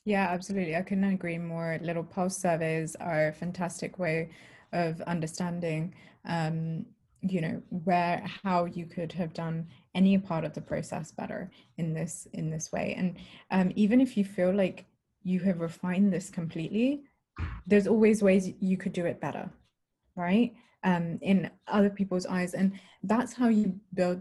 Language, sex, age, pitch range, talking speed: English, female, 20-39, 170-200 Hz, 165 wpm